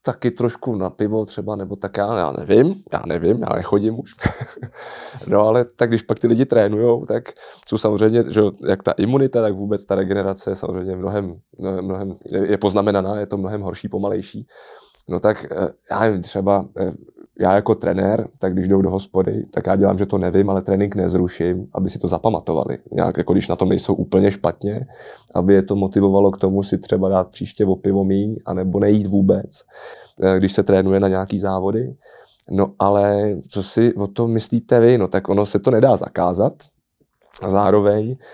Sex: male